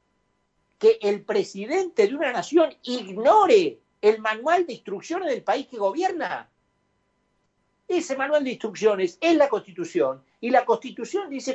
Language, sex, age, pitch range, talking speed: Spanish, male, 50-69, 210-320 Hz, 135 wpm